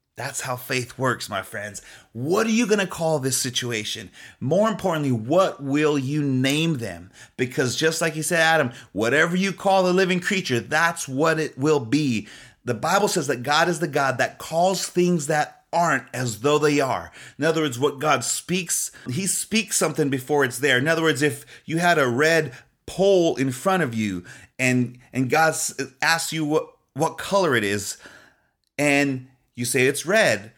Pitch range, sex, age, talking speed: 130-170 Hz, male, 30-49, 185 wpm